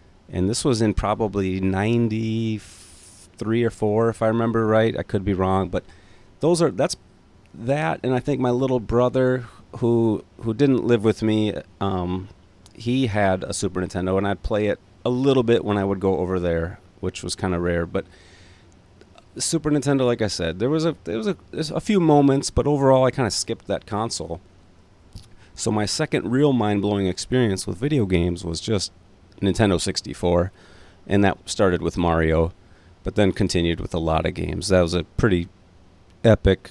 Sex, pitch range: male, 90-115 Hz